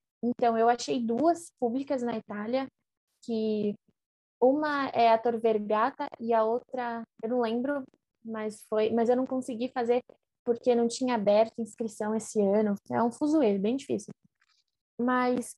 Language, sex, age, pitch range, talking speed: Portuguese, female, 10-29, 215-255 Hz, 150 wpm